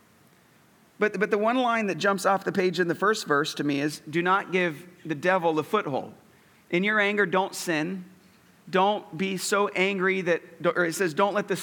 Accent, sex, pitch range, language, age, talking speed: American, male, 170-205 Hz, English, 40-59, 205 wpm